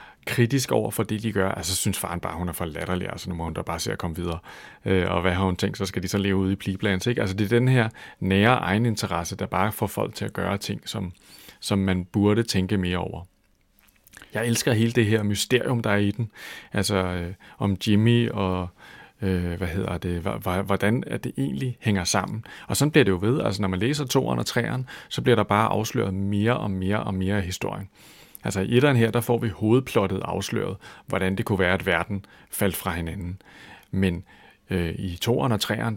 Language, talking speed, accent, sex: Danish, 225 wpm, native, male